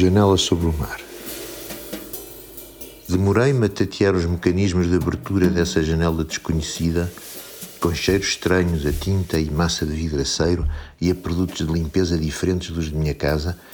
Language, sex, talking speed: Portuguese, male, 145 wpm